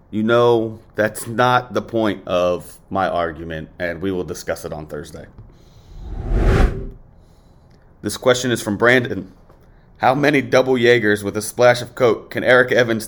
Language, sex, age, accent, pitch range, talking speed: English, male, 30-49, American, 90-120 Hz, 150 wpm